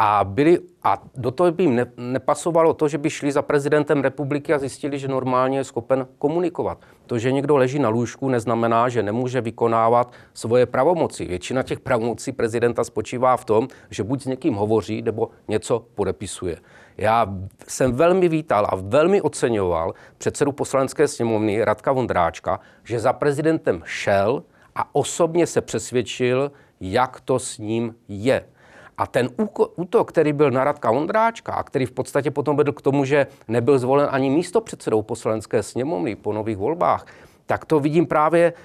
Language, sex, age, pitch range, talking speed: Czech, male, 40-59, 120-150 Hz, 165 wpm